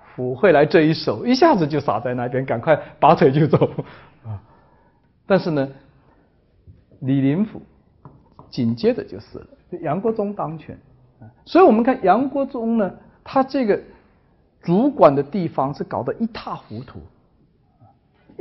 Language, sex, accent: Chinese, male, native